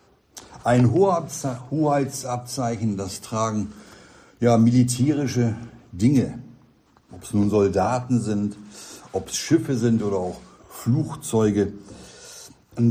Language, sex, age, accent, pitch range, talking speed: German, male, 60-79, German, 105-130 Hz, 95 wpm